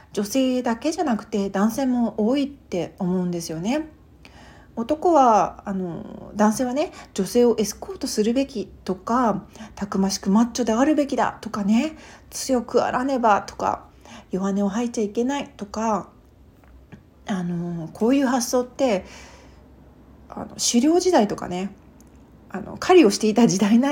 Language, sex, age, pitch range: Japanese, female, 40-59, 200-265 Hz